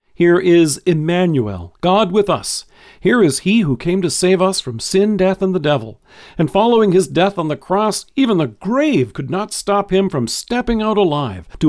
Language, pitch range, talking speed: English, 130-190 Hz, 200 wpm